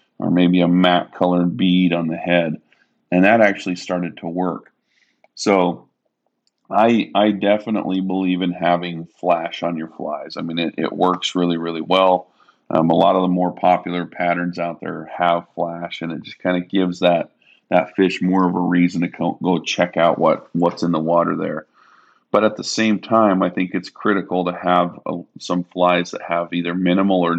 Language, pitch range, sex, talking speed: English, 85-90 Hz, male, 195 wpm